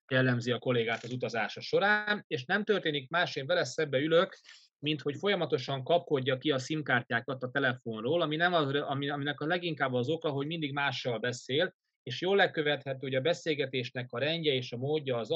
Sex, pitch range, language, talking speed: male, 125-155 Hz, Hungarian, 180 wpm